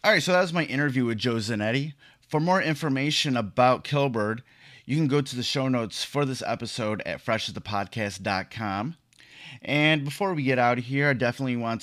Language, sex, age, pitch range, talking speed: English, male, 30-49, 110-140 Hz, 185 wpm